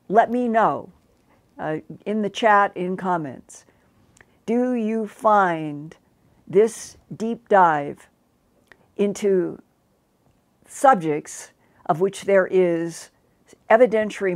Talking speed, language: 90 wpm, English